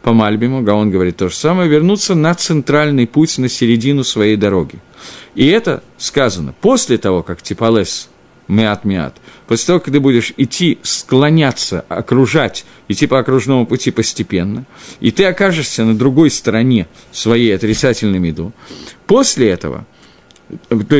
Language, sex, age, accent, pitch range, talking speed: Russian, male, 50-69, native, 105-150 Hz, 140 wpm